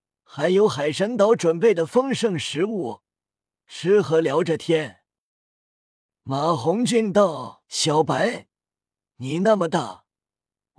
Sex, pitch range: male, 155-220 Hz